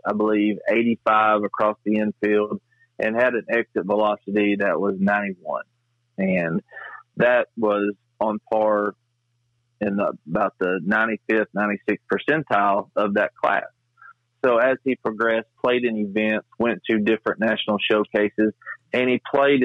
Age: 40-59